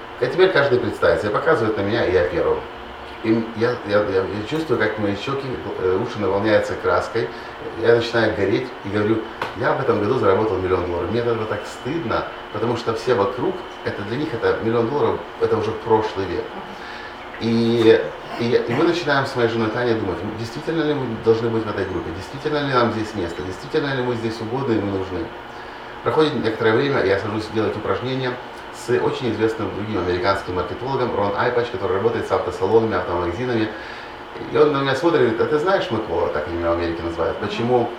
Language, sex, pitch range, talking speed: Russian, male, 110-130 Hz, 190 wpm